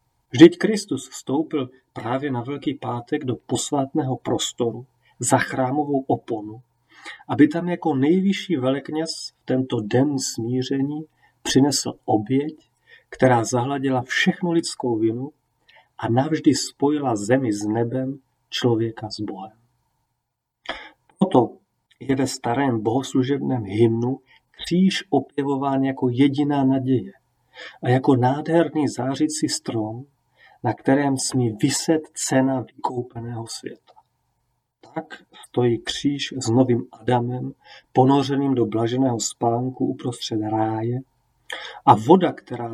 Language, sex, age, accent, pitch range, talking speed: Czech, male, 40-59, native, 120-145 Hz, 105 wpm